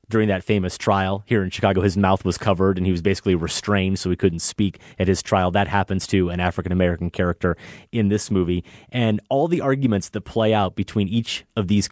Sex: male